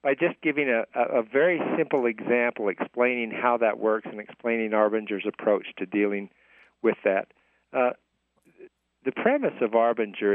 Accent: American